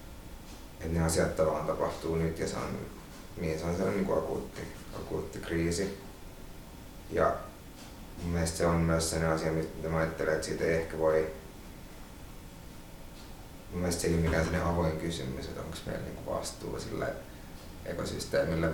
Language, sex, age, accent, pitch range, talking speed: Finnish, male, 30-49, native, 80-90 Hz, 155 wpm